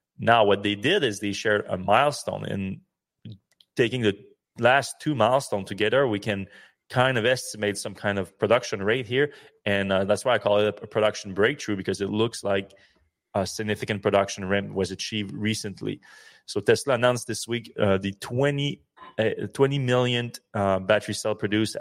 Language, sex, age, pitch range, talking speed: English, male, 30-49, 100-110 Hz, 175 wpm